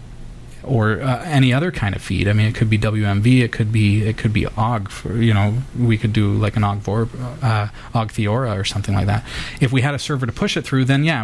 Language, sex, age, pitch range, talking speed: English, male, 30-49, 105-125 Hz, 235 wpm